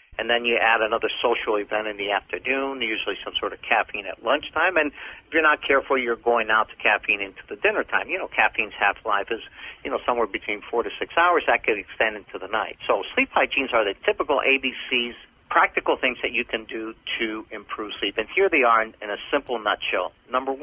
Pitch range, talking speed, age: 110-135 Hz, 220 wpm, 50-69